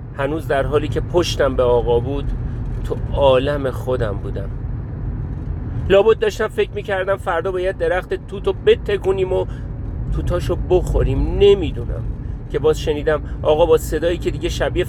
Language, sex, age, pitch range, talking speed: Persian, male, 40-59, 120-175 Hz, 135 wpm